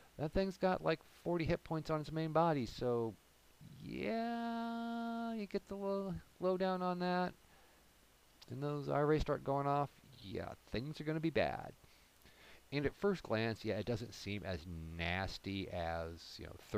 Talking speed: 165 wpm